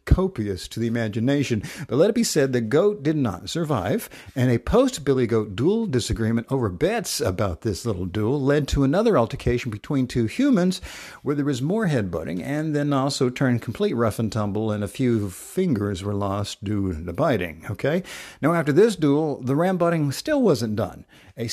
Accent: American